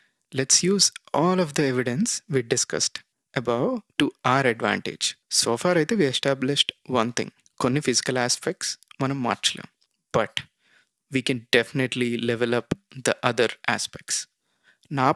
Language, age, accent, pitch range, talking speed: Telugu, 20-39, native, 125-155 Hz, 135 wpm